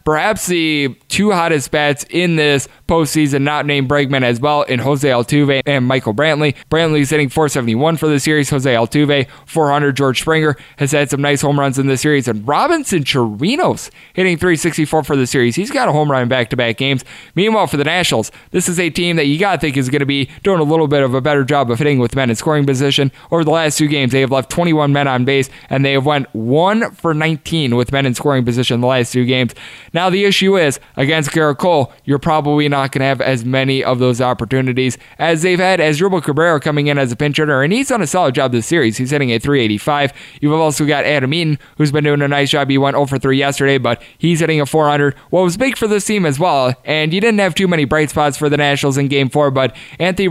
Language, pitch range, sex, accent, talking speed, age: English, 135-160 Hz, male, American, 240 wpm, 20-39